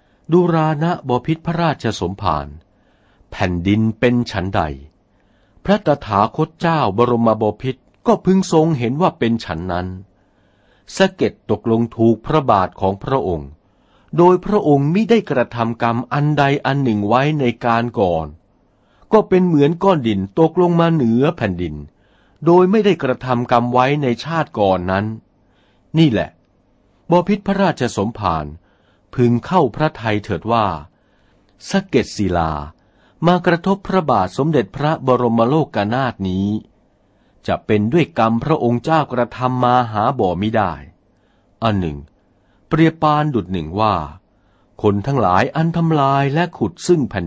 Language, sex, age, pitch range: Thai, male, 60-79, 100-150 Hz